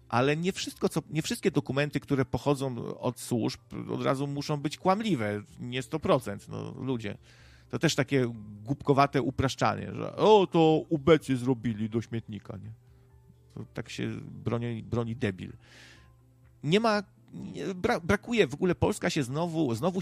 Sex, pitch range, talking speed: male, 115-145 Hz, 150 wpm